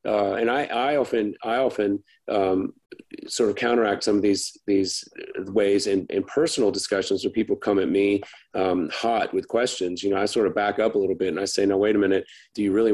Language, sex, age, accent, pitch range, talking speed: English, male, 30-49, American, 95-105 Hz, 225 wpm